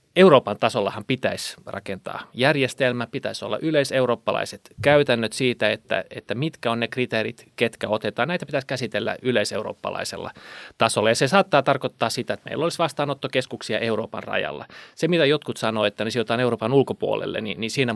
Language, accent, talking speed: Finnish, native, 150 wpm